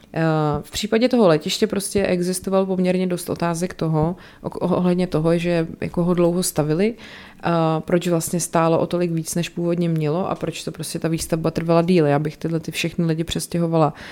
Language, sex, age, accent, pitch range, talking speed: Czech, female, 30-49, native, 160-190 Hz, 170 wpm